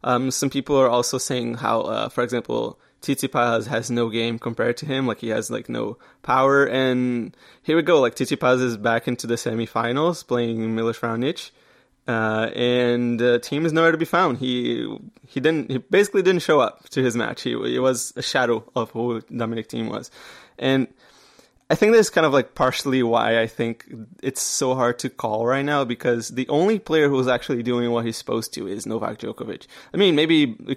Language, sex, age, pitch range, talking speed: English, male, 20-39, 115-135 Hz, 205 wpm